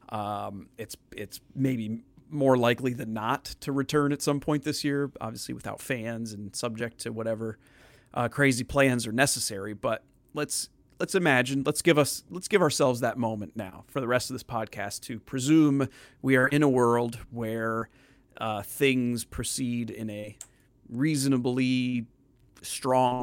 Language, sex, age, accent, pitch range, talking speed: English, male, 30-49, American, 115-135 Hz, 160 wpm